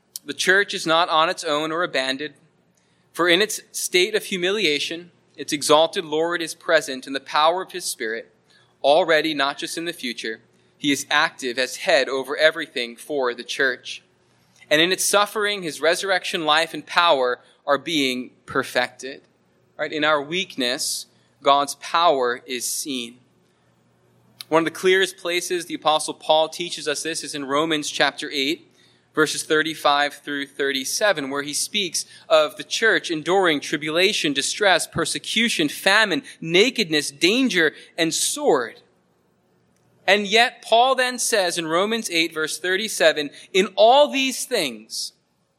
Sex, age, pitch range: male, 20-39, 140-195 Hz